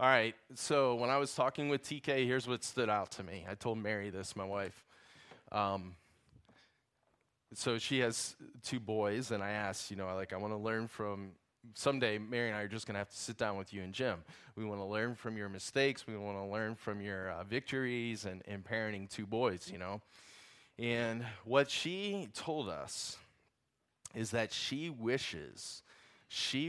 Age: 20-39